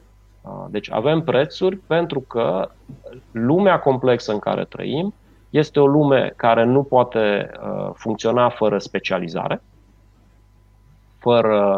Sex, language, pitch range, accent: male, Romanian, 100-125 Hz, native